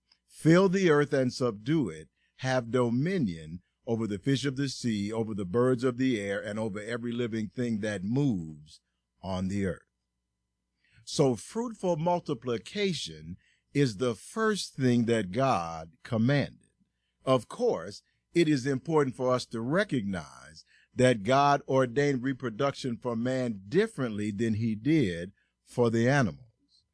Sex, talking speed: male, 140 wpm